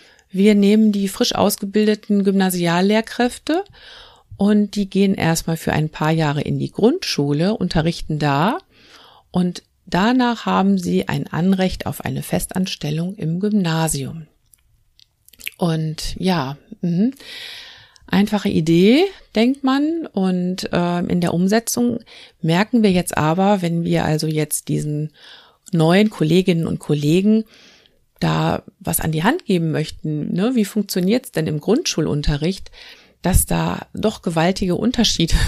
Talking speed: 125 wpm